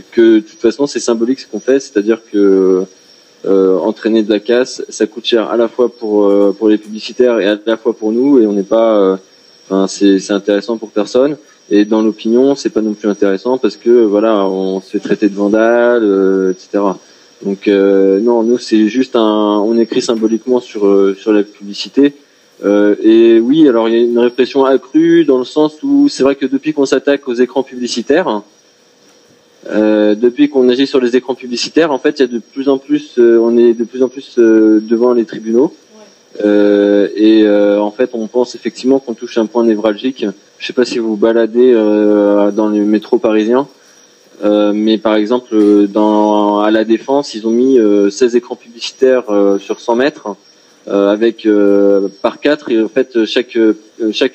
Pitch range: 105-125 Hz